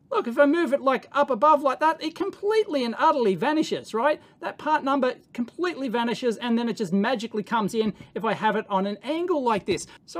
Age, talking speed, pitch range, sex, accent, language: 40-59, 225 wpm, 195-280 Hz, male, Australian, English